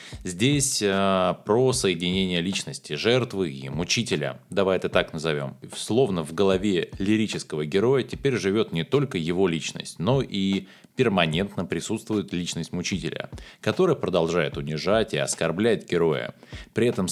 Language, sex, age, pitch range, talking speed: Russian, male, 20-39, 80-125 Hz, 130 wpm